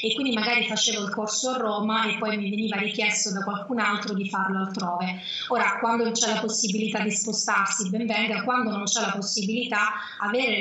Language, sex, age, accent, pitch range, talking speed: Italian, female, 20-39, native, 200-225 Hz, 200 wpm